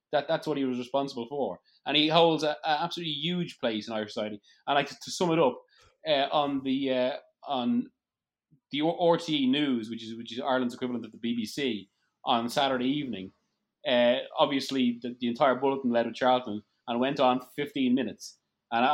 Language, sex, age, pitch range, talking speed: English, male, 30-49, 115-155 Hz, 190 wpm